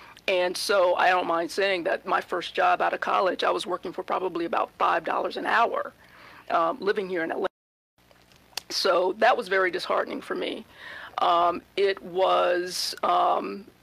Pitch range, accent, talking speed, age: 180-255 Hz, American, 165 wpm, 40-59